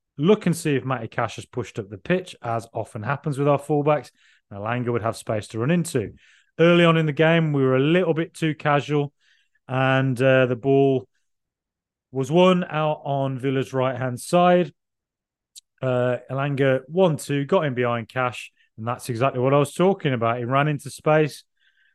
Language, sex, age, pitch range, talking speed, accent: English, male, 30-49, 125-155 Hz, 180 wpm, British